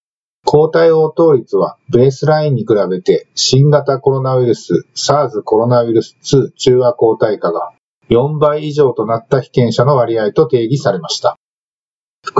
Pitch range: 120-155 Hz